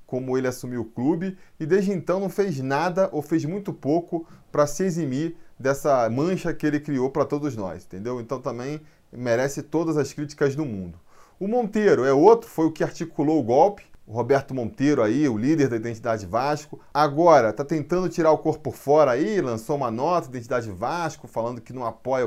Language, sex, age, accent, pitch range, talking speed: Portuguese, male, 20-39, Brazilian, 130-175 Hz, 195 wpm